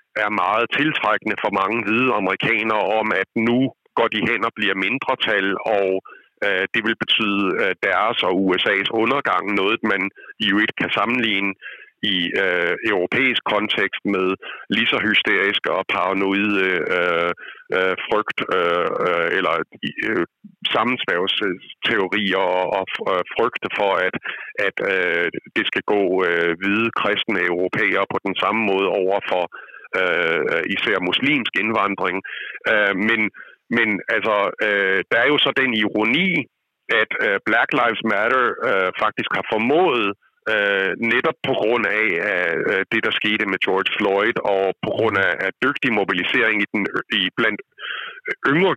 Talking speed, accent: 135 wpm, native